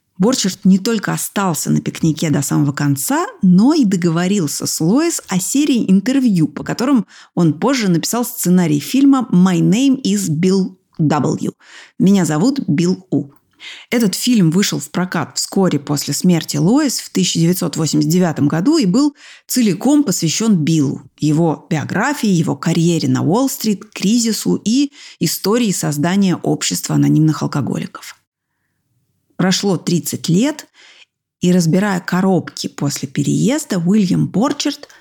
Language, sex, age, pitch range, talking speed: Russian, female, 30-49, 165-250 Hz, 125 wpm